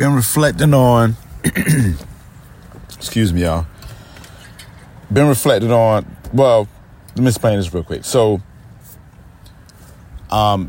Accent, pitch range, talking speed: American, 95-125 Hz, 100 wpm